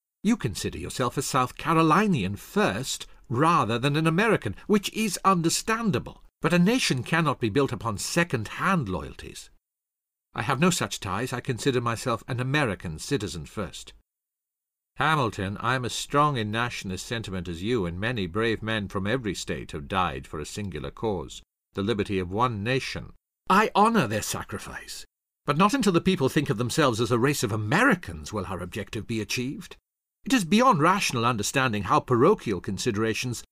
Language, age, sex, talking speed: English, 50-69, male, 165 wpm